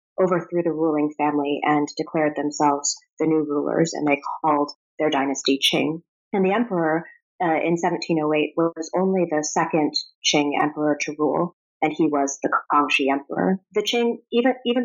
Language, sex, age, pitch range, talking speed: English, female, 30-49, 150-180 Hz, 160 wpm